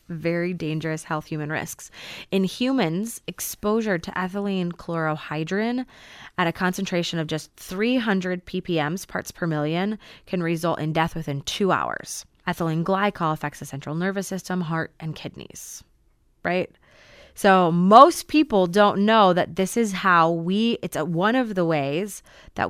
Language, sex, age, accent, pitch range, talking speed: English, female, 20-39, American, 160-205 Hz, 150 wpm